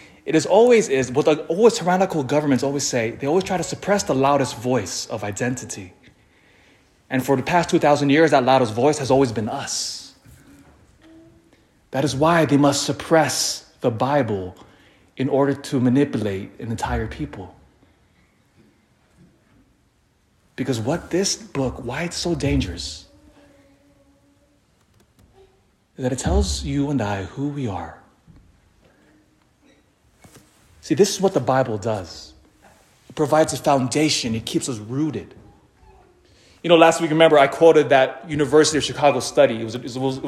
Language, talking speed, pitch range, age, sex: English, 140 wpm, 120-155 Hz, 30-49, male